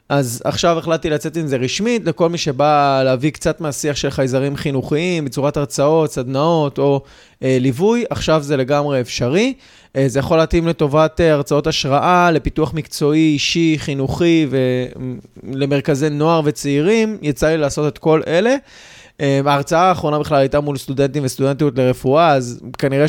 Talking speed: 150 wpm